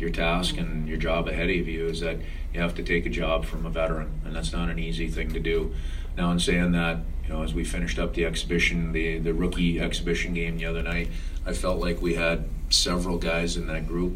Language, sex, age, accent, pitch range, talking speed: English, male, 40-59, American, 80-85 Hz, 240 wpm